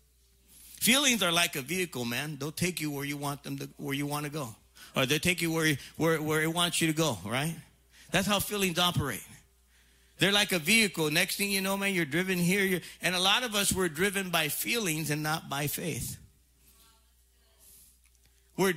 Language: English